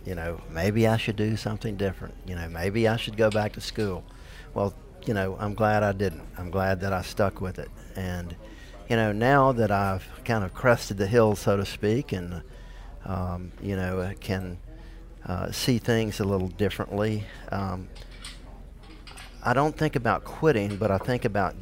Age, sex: 50-69, male